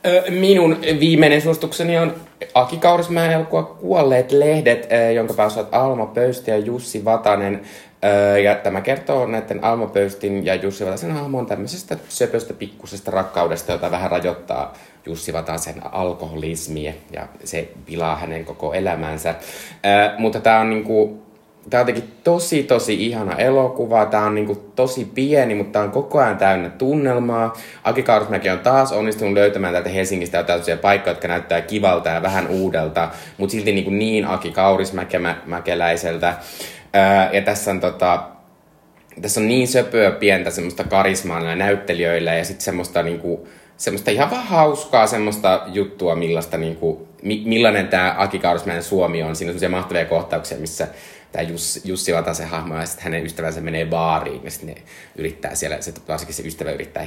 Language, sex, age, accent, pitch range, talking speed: Finnish, male, 20-39, native, 85-115 Hz, 145 wpm